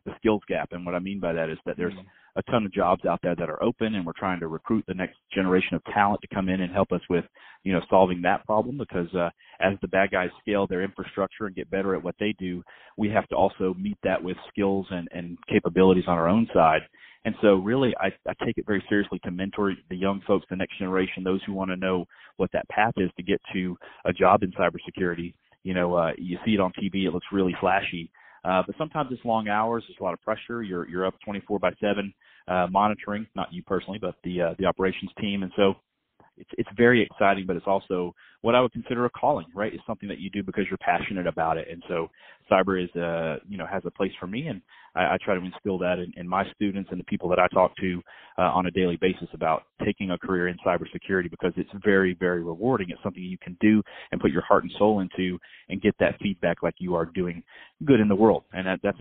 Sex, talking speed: male, 250 wpm